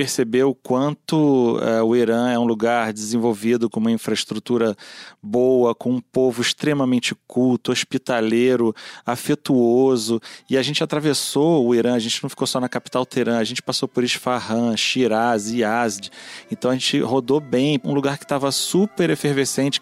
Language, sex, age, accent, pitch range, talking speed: Portuguese, male, 30-49, Brazilian, 120-140 Hz, 155 wpm